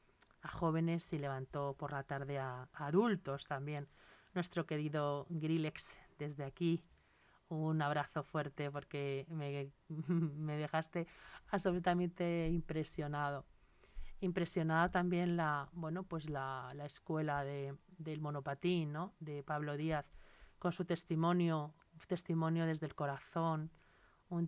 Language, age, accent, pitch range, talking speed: Spanish, 30-49, Spanish, 145-175 Hz, 120 wpm